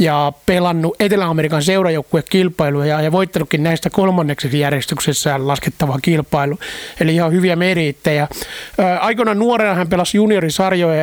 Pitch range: 155-190 Hz